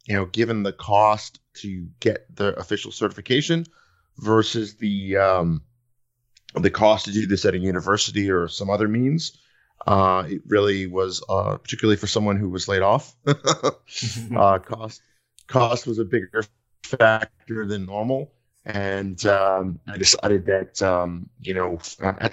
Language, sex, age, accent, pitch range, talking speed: English, male, 30-49, American, 95-115 Hz, 150 wpm